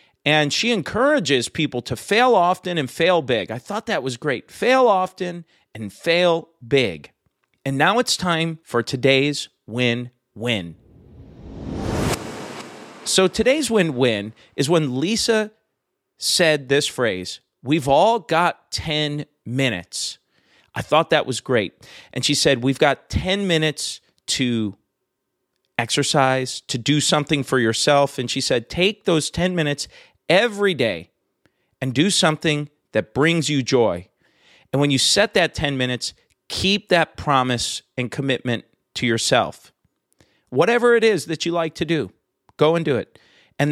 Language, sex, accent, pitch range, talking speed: English, male, American, 130-170 Hz, 140 wpm